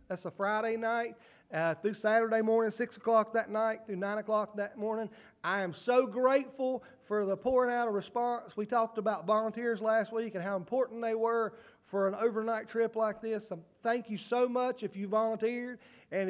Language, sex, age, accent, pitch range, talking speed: English, male, 40-59, American, 200-235 Hz, 195 wpm